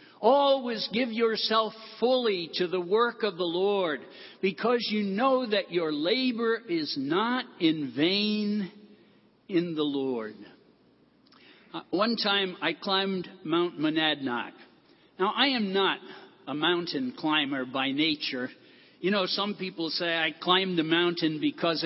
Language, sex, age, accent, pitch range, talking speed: English, male, 60-79, American, 170-245 Hz, 135 wpm